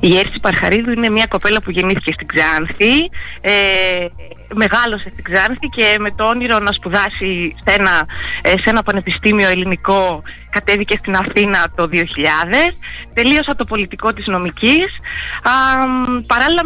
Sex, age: female, 20-39